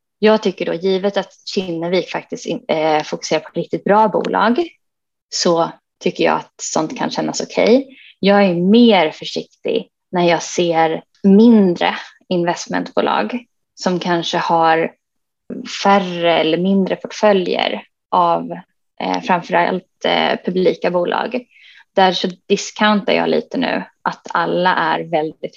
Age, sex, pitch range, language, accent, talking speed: 20-39, female, 175-225 Hz, Swedish, native, 125 wpm